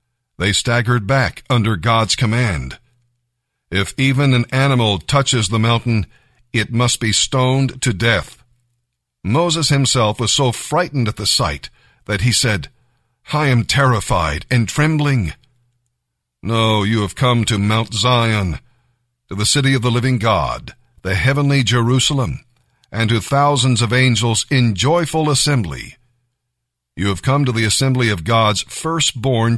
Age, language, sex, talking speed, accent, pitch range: 50-69, English, male, 140 wpm, American, 110-130 Hz